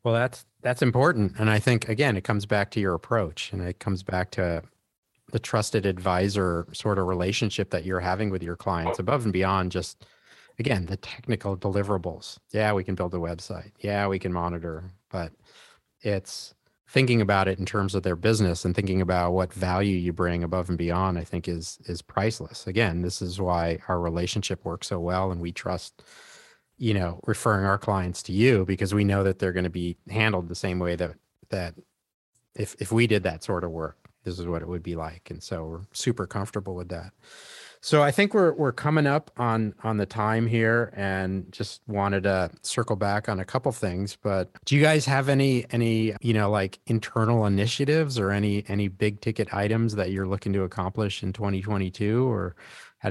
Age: 40-59